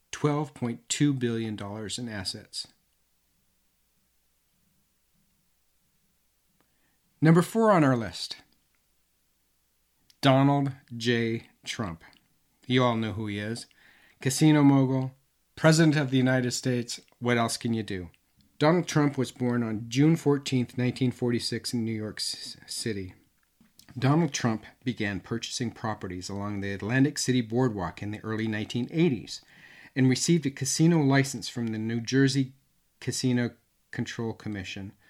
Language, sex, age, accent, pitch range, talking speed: English, male, 40-59, American, 110-135 Hz, 115 wpm